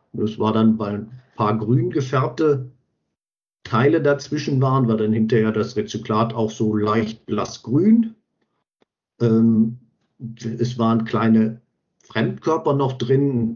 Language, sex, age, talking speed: German, male, 50-69, 120 wpm